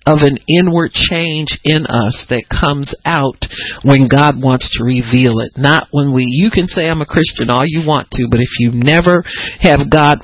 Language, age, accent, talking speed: English, 50-69, American, 200 wpm